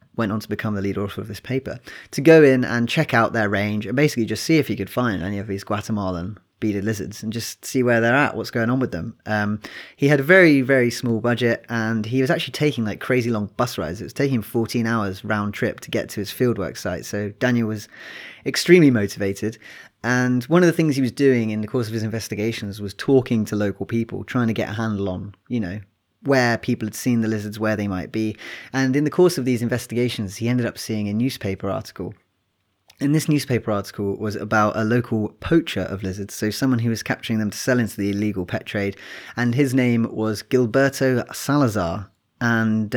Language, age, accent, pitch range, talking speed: English, 20-39, British, 105-125 Hz, 225 wpm